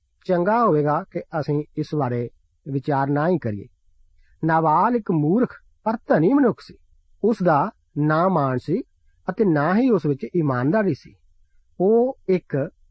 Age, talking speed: 50-69, 140 wpm